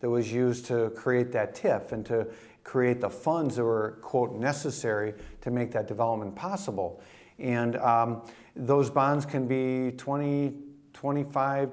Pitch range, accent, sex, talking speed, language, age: 120-150 Hz, American, male, 150 wpm, English, 50-69